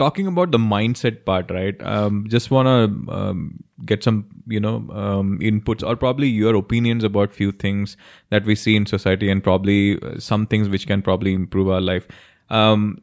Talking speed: 185 wpm